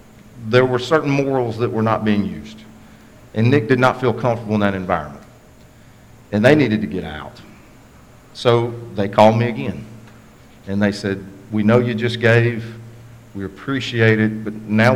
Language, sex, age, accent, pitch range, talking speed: English, male, 40-59, American, 105-130 Hz, 170 wpm